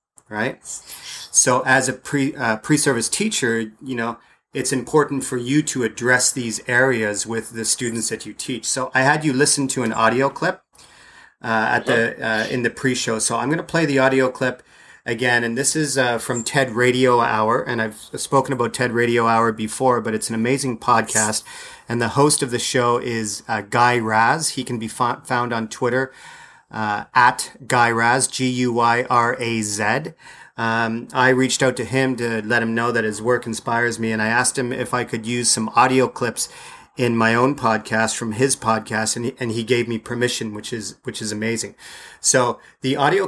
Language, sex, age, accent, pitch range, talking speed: English, male, 40-59, American, 115-130 Hz, 200 wpm